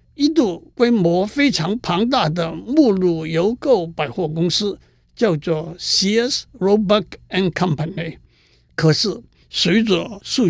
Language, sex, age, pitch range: Chinese, male, 60-79, 165-210 Hz